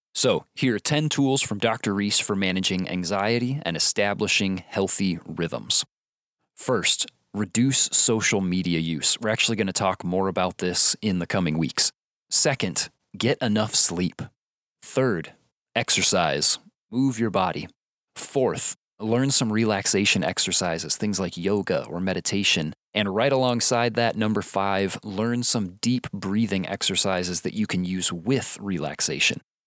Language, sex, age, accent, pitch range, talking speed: English, male, 30-49, American, 95-125 Hz, 140 wpm